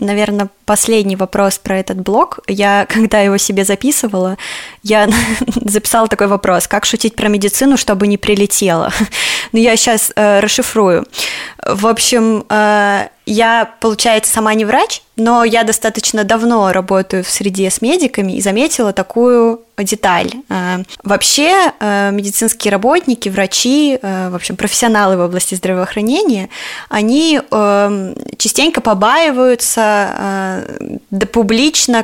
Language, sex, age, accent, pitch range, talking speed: Russian, female, 20-39, native, 200-240 Hz, 125 wpm